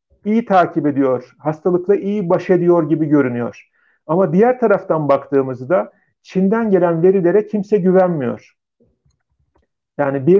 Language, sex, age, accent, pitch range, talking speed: Turkish, male, 40-59, native, 150-190 Hz, 110 wpm